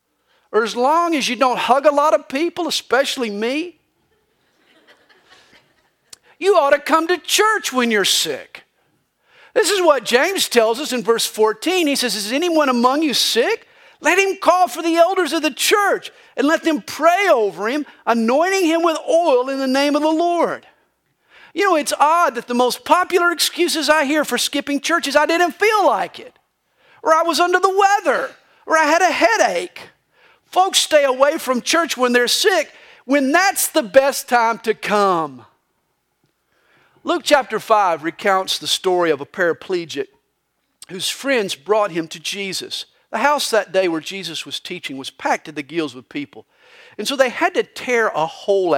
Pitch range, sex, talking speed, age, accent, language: 215-340 Hz, male, 180 wpm, 50-69, American, English